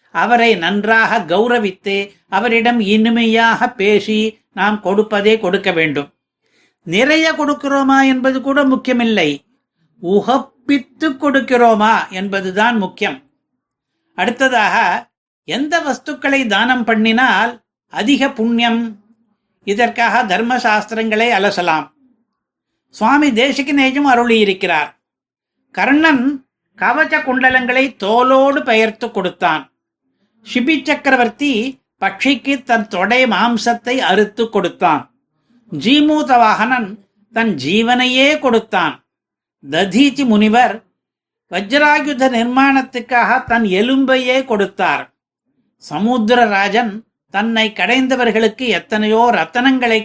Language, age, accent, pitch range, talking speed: Tamil, 60-79, native, 210-265 Hz, 75 wpm